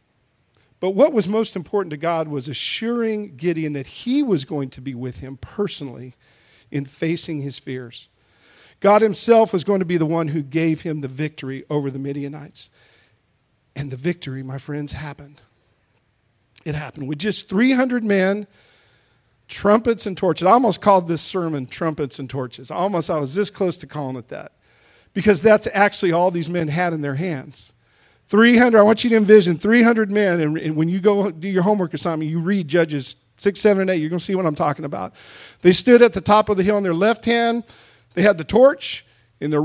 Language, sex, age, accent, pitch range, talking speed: English, male, 50-69, American, 140-210 Hz, 200 wpm